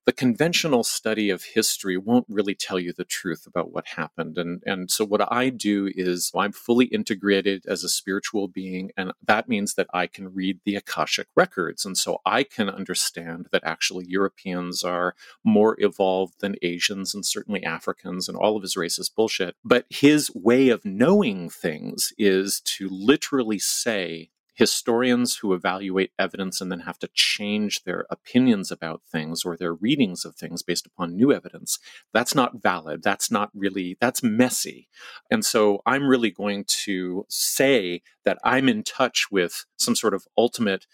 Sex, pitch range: male, 95-115 Hz